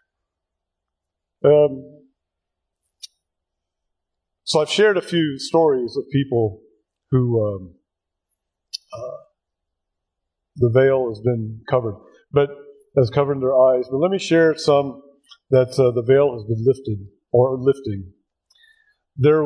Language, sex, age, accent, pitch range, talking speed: English, male, 50-69, American, 125-160 Hz, 115 wpm